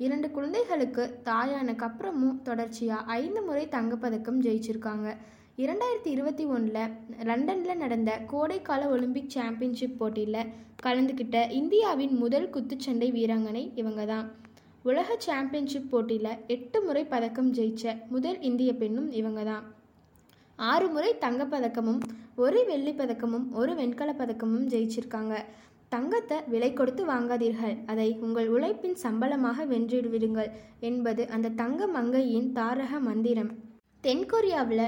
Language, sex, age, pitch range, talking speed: Tamil, female, 20-39, 225-275 Hz, 105 wpm